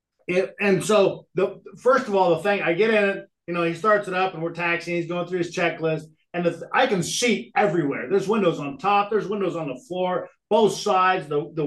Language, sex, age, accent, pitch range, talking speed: English, male, 40-59, American, 165-200 Hz, 235 wpm